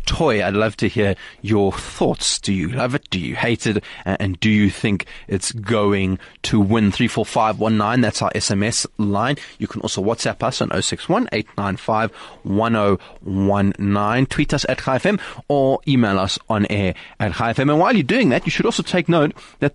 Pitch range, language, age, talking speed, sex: 105-145 Hz, English, 30-49, 175 wpm, male